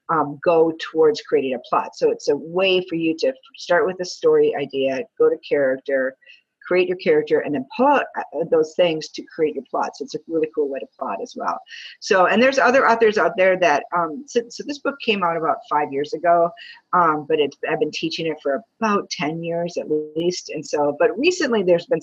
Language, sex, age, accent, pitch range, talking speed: English, female, 50-69, American, 155-225 Hz, 220 wpm